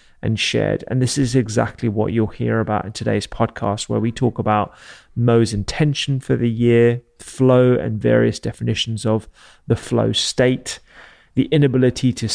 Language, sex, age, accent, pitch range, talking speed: English, male, 30-49, British, 110-130 Hz, 160 wpm